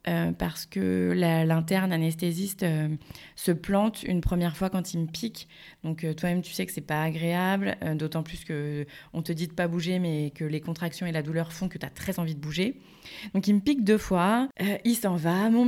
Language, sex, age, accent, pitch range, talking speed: French, female, 20-39, French, 155-190 Hz, 235 wpm